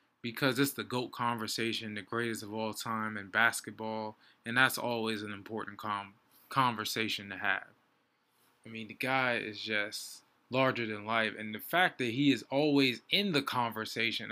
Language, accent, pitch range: English, American, 110-125 Hz